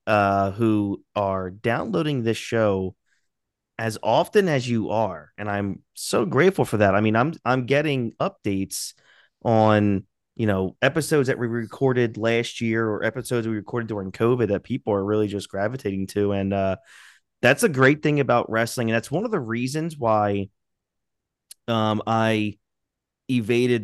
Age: 30-49